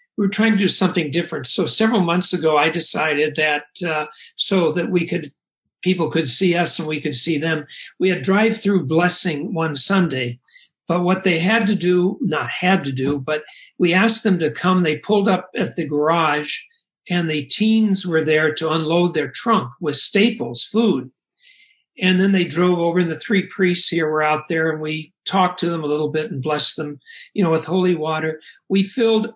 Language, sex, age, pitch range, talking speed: English, male, 60-79, 160-200 Hz, 205 wpm